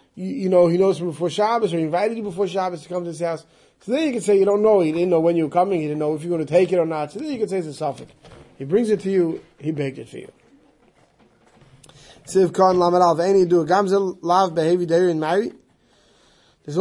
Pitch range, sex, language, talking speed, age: 160-195 Hz, male, English, 230 wpm, 20-39